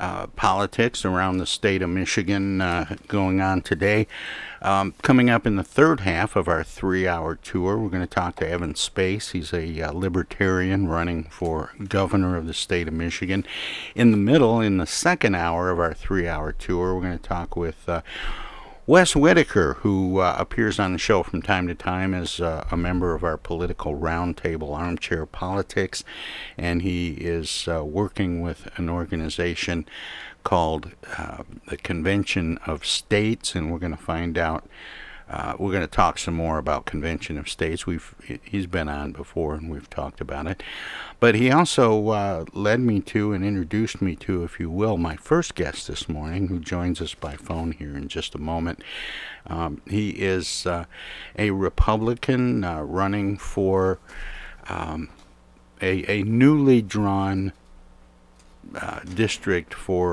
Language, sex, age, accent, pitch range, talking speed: English, male, 50-69, American, 85-100 Hz, 165 wpm